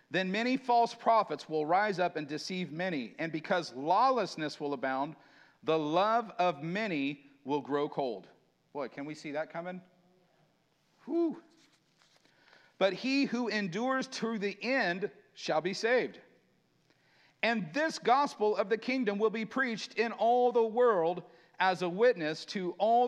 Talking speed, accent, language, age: 145 wpm, American, English, 50-69